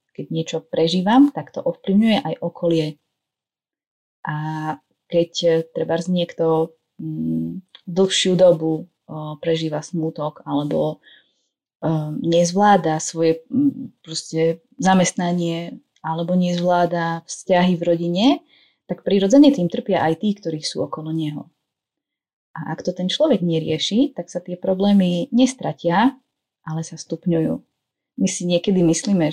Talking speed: 110 wpm